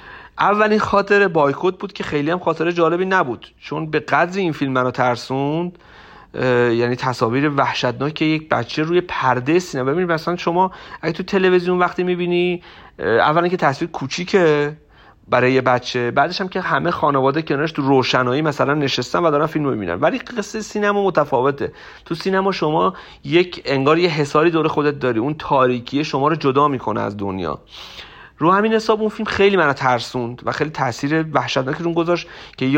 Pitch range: 130-175 Hz